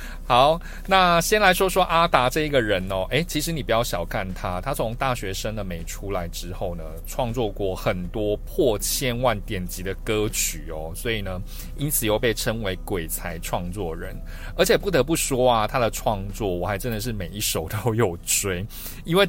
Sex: male